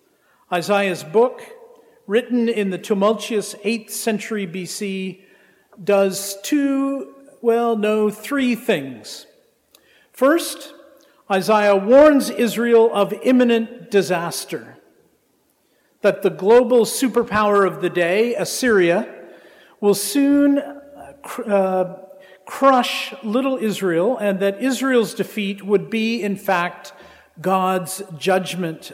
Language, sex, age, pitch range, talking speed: English, male, 50-69, 185-240 Hz, 95 wpm